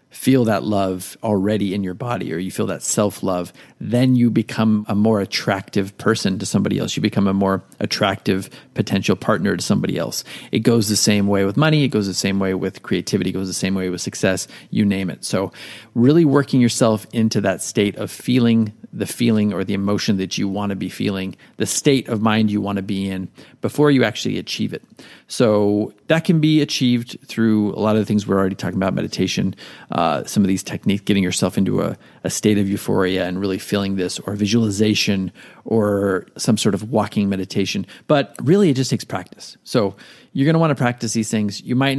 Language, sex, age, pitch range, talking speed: English, male, 40-59, 100-125 Hz, 210 wpm